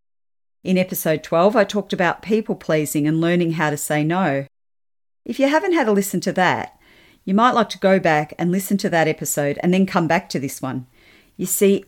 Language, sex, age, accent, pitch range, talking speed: English, female, 40-59, Australian, 145-185 Hz, 205 wpm